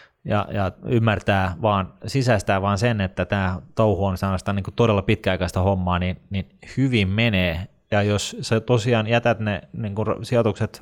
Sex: male